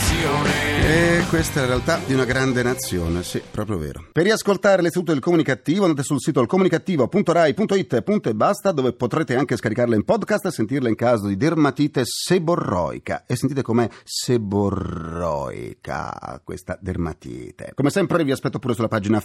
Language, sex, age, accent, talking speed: Italian, male, 40-59, native, 150 wpm